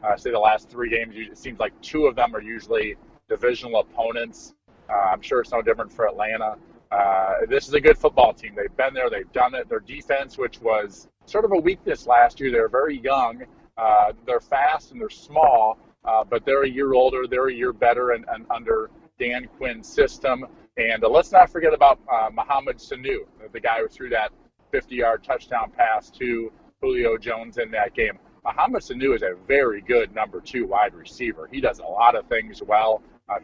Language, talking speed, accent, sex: English, 205 wpm, American, male